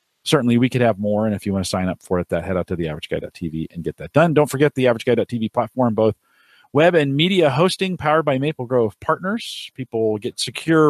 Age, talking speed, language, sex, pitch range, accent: 40-59, 225 wpm, English, male, 95-135 Hz, American